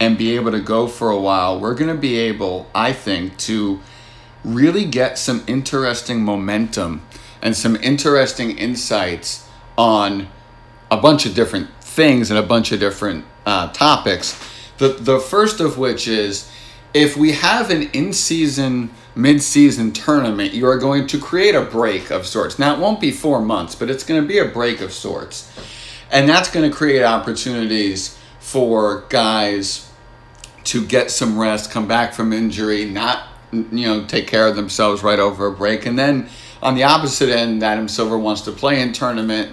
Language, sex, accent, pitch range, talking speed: English, male, American, 110-130 Hz, 170 wpm